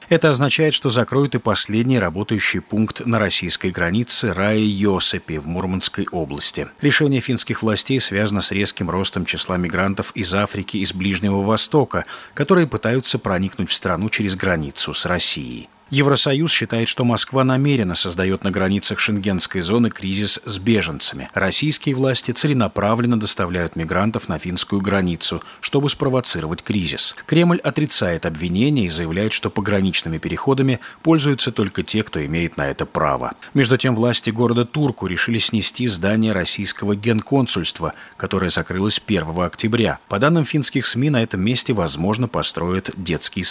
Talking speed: 140 wpm